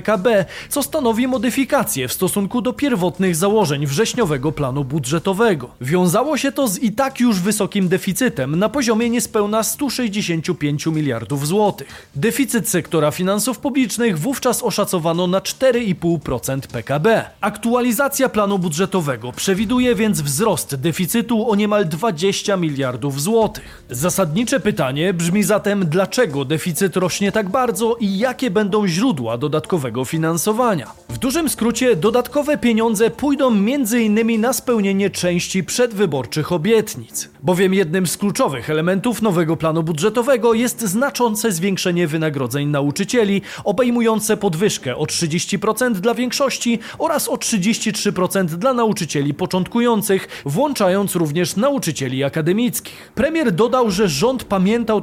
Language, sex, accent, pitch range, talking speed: Polish, male, native, 170-235 Hz, 120 wpm